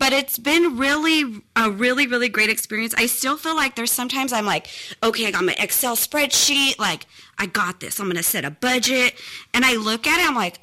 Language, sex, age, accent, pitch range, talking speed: English, female, 30-49, American, 205-260 Hz, 220 wpm